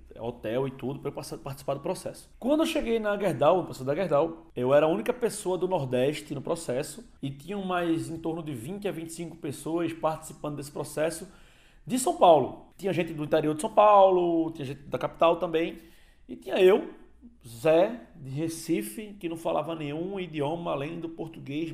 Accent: Brazilian